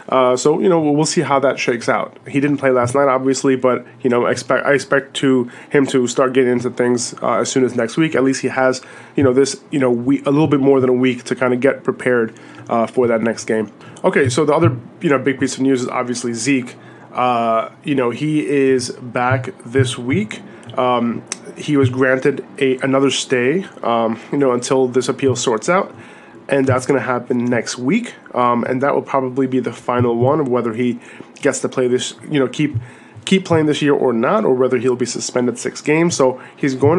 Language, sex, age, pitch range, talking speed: English, male, 20-39, 125-140 Hz, 225 wpm